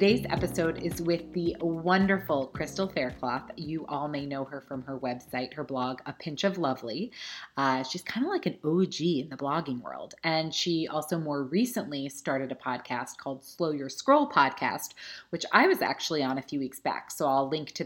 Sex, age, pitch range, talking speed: female, 30-49, 140-190 Hz, 200 wpm